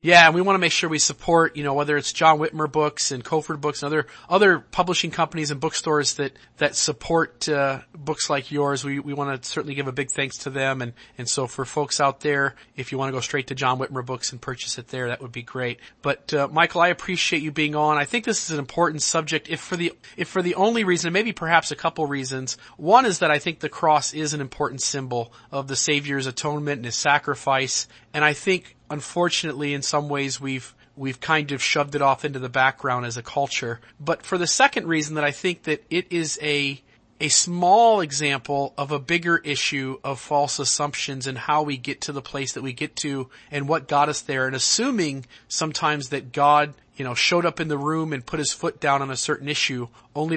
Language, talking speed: English, 230 wpm